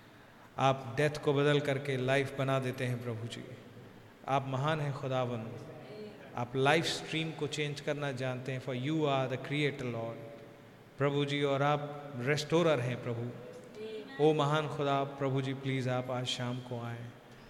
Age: 40-59